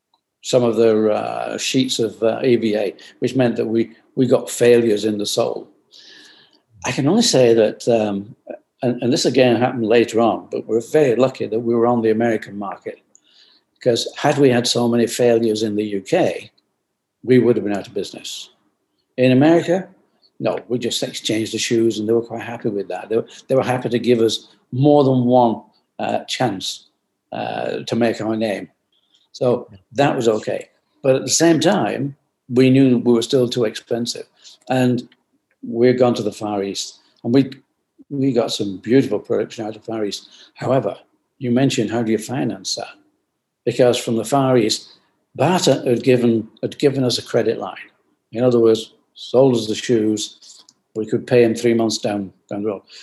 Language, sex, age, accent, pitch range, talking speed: English, male, 60-79, British, 110-130 Hz, 190 wpm